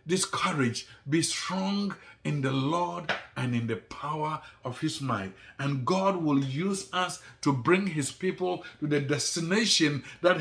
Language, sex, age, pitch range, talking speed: English, male, 60-79, 135-185 Hz, 155 wpm